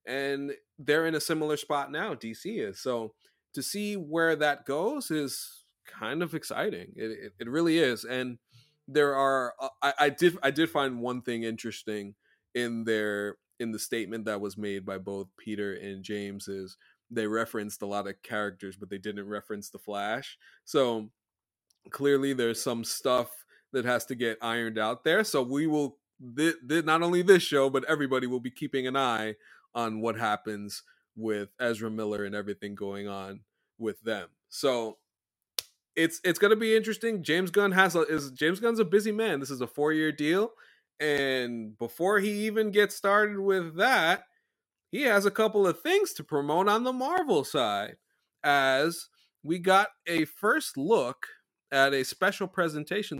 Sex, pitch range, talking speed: male, 110-165 Hz, 175 wpm